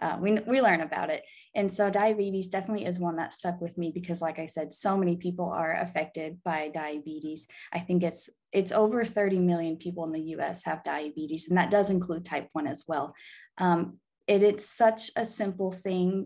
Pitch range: 170-205 Hz